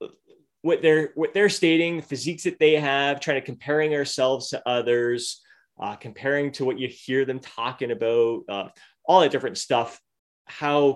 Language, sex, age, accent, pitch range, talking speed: English, male, 20-39, American, 115-155 Hz, 170 wpm